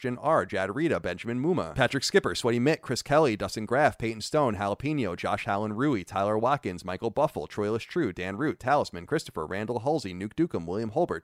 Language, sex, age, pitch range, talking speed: English, male, 30-49, 105-150 Hz, 180 wpm